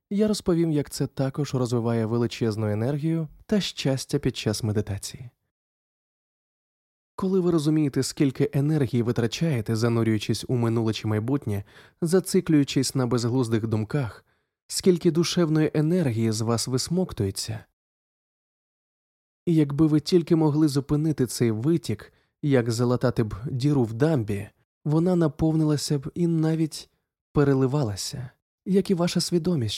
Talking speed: 115 wpm